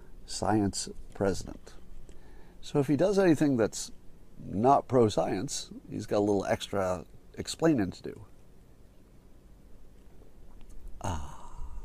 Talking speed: 95 wpm